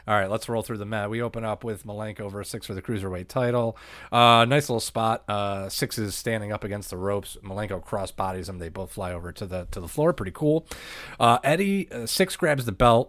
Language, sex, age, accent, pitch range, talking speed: English, male, 30-49, American, 90-110 Hz, 235 wpm